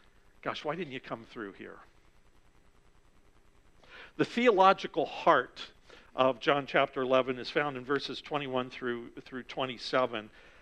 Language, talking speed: English, 125 wpm